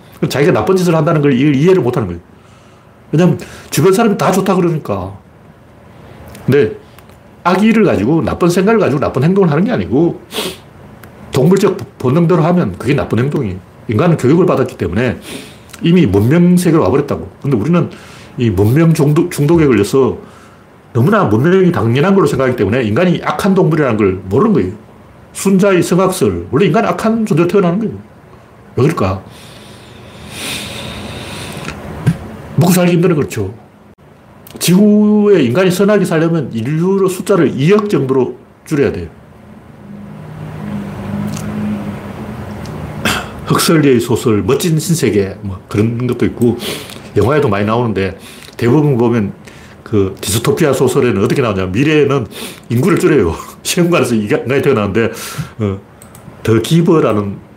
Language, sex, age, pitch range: Korean, male, 40-59, 110-175 Hz